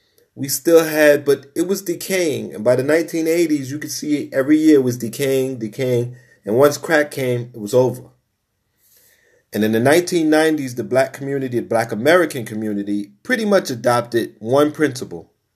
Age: 40-59